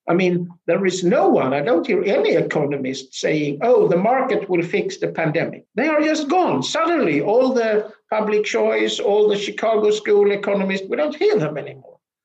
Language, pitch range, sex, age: English, 165-215 Hz, male, 60-79